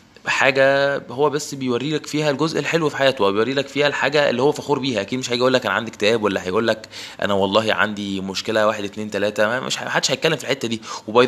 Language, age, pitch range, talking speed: Arabic, 20-39, 110-135 Hz, 235 wpm